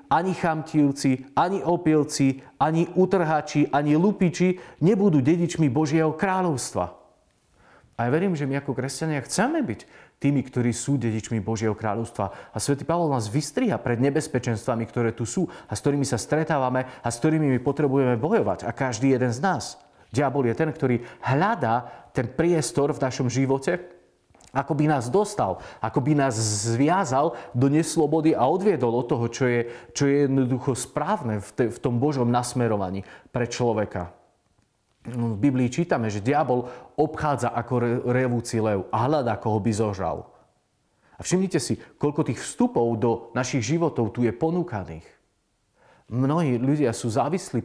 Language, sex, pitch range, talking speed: Slovak, male, 115-150 Hz, 150 wpm